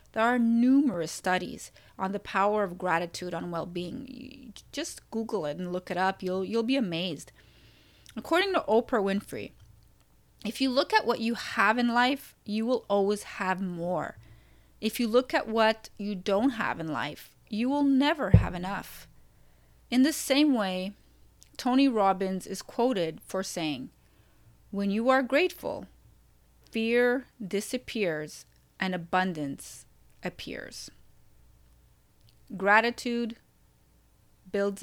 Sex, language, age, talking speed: female, English, 30-49, 130 wpm